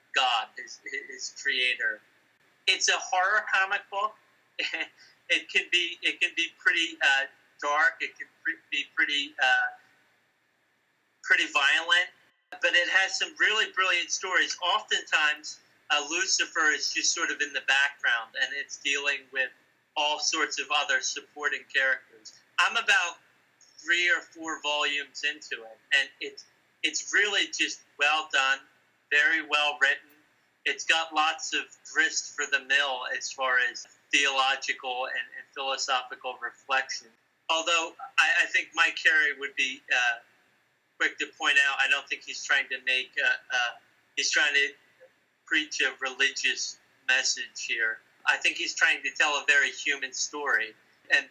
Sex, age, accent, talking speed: male, 30-49, American, 150 wpm